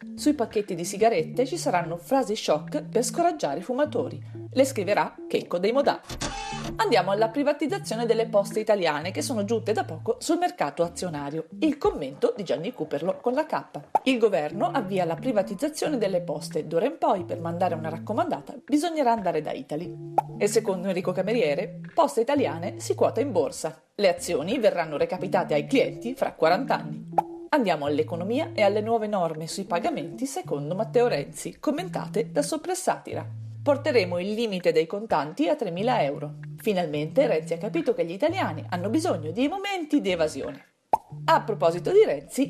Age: 40-59